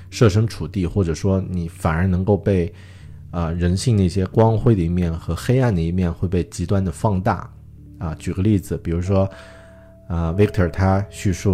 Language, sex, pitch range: Chinese, male, 85-105 Hz